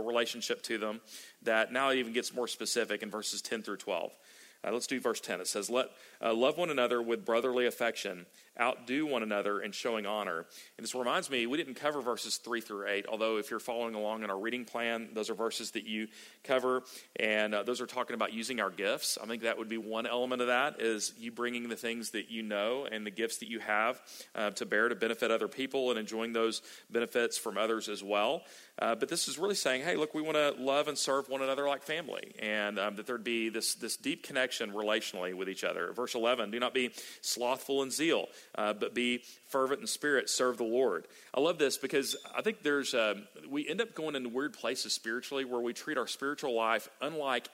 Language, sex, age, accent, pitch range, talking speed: English, male, 40-59, American, 110-130 Hz, 225 wpm